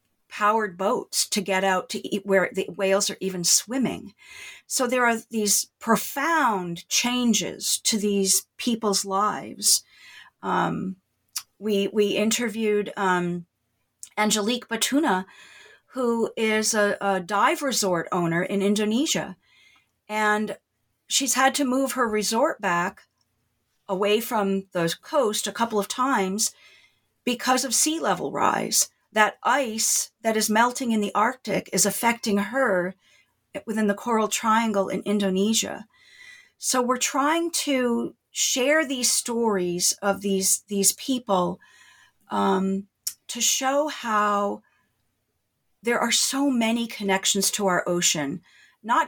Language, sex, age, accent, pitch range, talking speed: English, female, 40-59, American, 190-245 Hz, 125 wpm